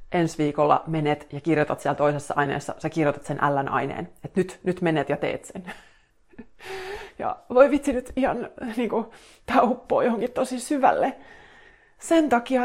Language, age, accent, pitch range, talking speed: Finnish, 30-49, native, 170-230 Hz, 150 wpm